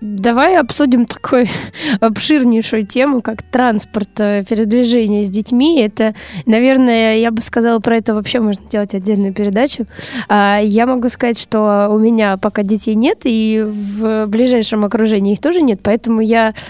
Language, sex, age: Russian, female, 20-39